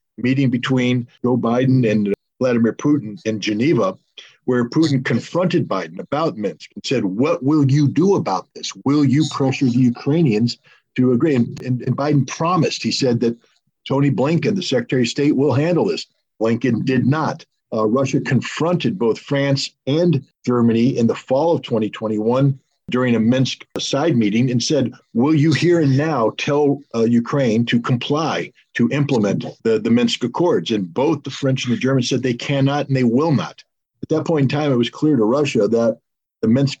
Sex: male